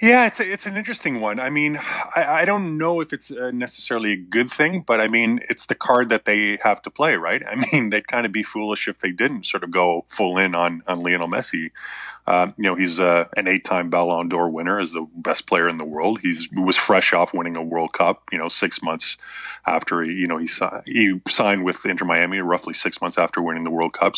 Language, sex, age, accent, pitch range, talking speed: English, male, 30-49, American, 85-110 Hz, 245 wpm